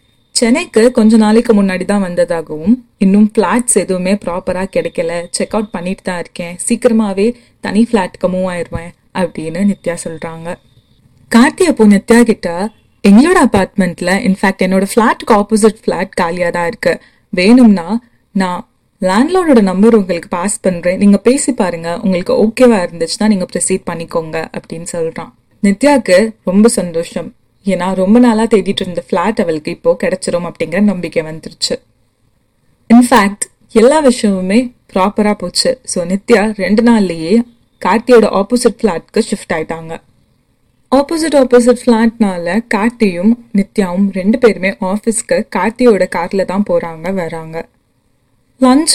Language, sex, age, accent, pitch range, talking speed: Tamil, female, 30-49, native, 180-230 Hz, 115 wpm